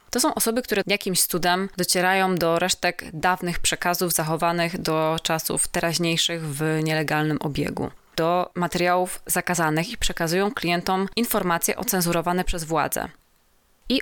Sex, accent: female, native